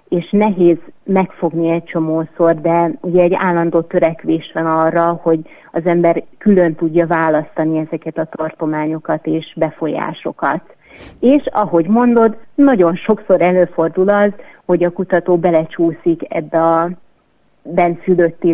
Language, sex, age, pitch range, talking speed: Hungarian, female, 30-49, 165-180 Hz, 120 wpm